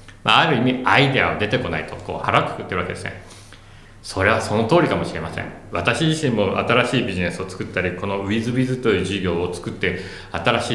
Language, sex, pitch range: Japanese, male, 90-130 Hz